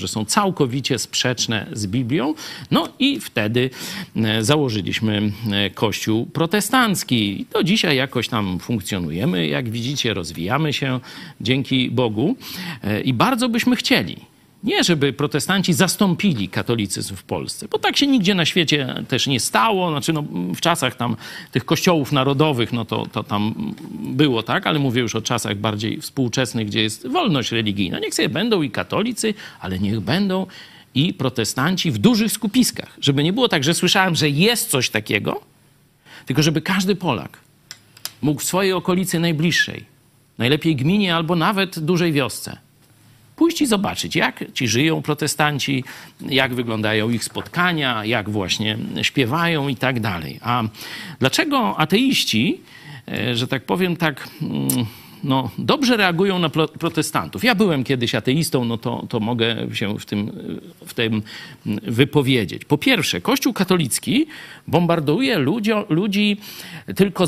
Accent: native